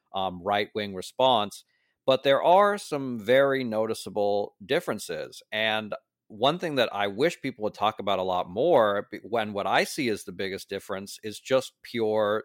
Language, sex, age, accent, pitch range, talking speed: English, male, 40-59, American, 100-125 Hz, 165 wpm